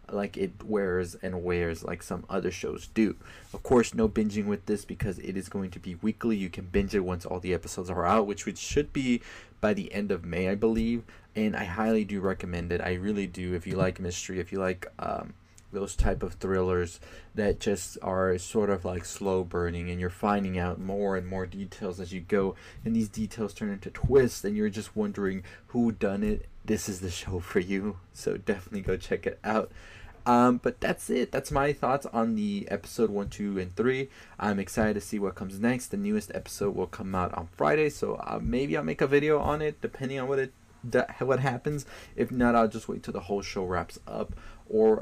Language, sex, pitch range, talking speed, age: English, male, 95-115 Hz, 220 wpm, 20-39